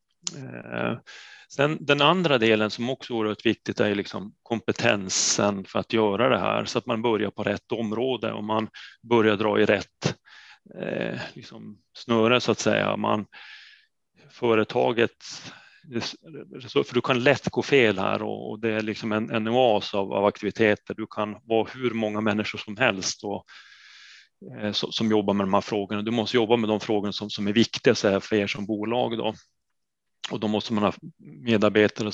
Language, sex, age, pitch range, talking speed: Swedish, male, 30-49, 105-115 Hz, 170 wpm